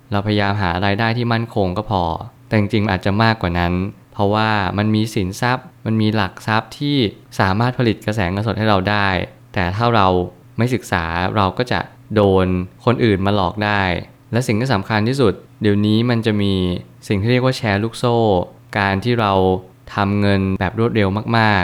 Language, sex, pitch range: Thai, male, 95-115 Hz